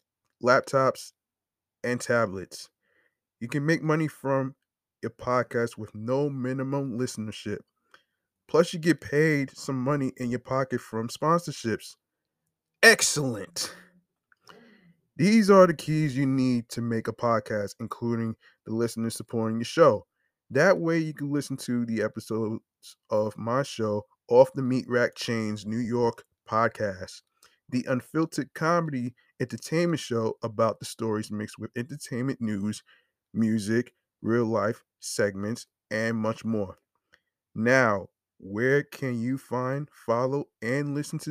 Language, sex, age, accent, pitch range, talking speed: English, male, 20-39, American, 110-145 Hz, 130 wpm